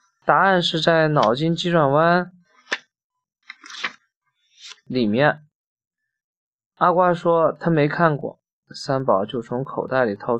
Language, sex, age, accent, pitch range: Chinese, male, 20-39, native, 140-185 Hz